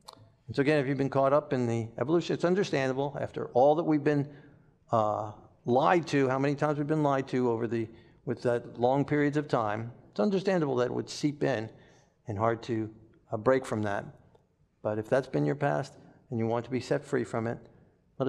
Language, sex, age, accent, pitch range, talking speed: English, male, 50-69, American, 125-160 Hz, 215 wpm